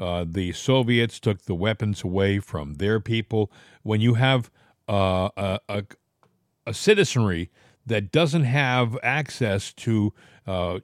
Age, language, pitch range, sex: 50-69, English, 110-145 Hz, male